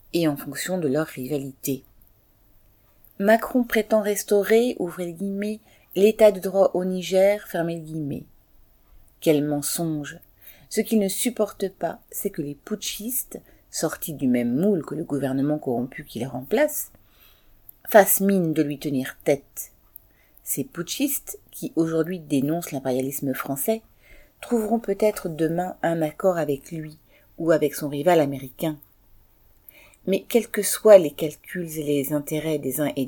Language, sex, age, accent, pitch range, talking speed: French, female, 40-59, French, 140-195 Hz, 140 wpm